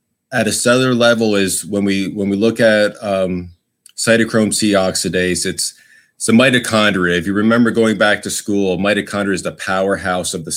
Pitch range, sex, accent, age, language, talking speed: 95-110 Hz, male, American, 30-49, English, 180 wpm